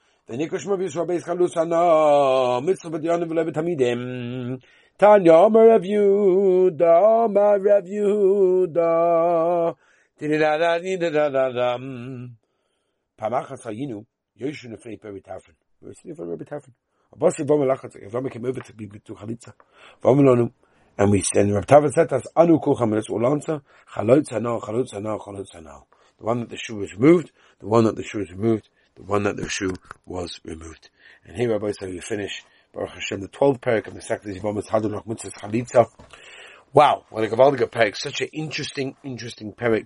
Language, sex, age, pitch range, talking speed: English, male, 60-79, 110-155 Hz, 170 wpm